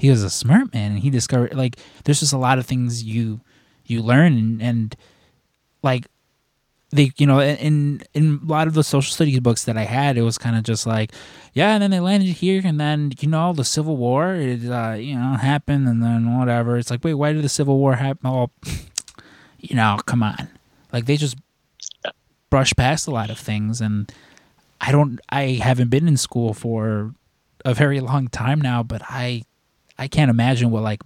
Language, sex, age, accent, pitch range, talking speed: English, male, 20-39, American, 115-140 Hz, 205 wpm